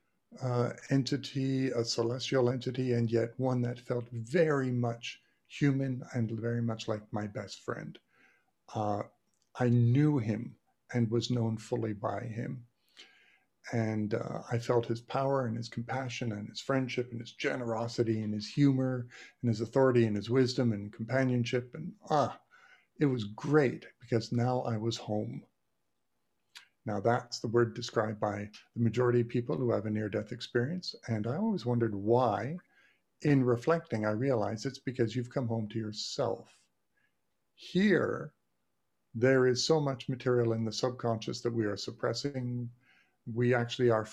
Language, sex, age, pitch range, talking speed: English, male, 50-69, 110-130 Hz, 155 wpm